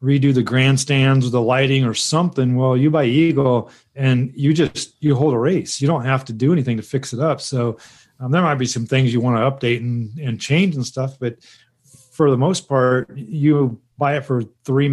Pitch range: 120-140 Hz